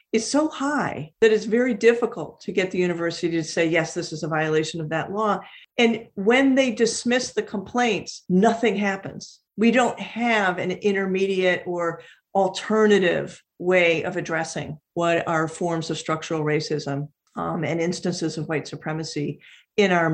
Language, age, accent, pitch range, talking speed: English, 50-69, American, 160-205 Hz, 160 wpm